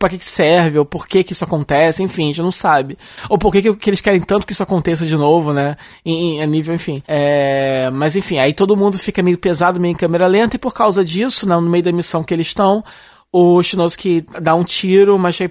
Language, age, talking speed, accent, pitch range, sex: Portuguese, 20-39, 245 wpm, Brazilian, 155-195 Hz, male